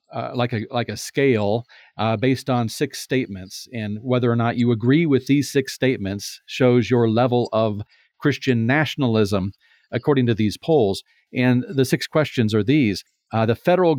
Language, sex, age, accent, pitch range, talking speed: English, male, 40-59, American, 110-140 Hz, 170 wpm